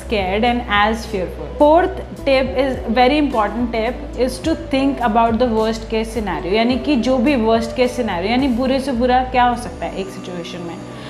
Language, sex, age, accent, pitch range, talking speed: Hindi, female, 30-49, native, 225-260 Hz, 185 wpm